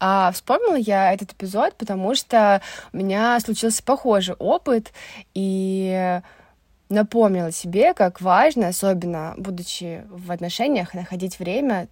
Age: 20-39